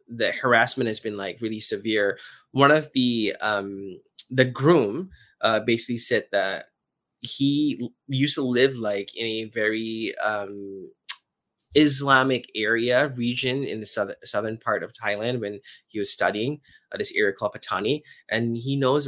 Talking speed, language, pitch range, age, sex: 155 wpm, English, 100-130 Hz, 20-39, male